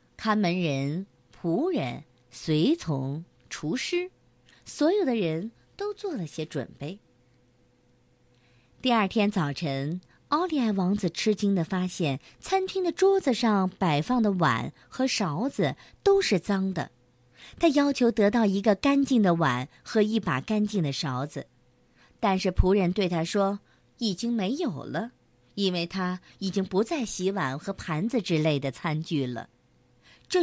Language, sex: Chinese, male